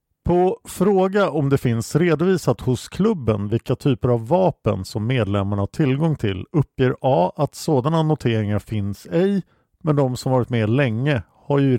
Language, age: Swedish, 50-69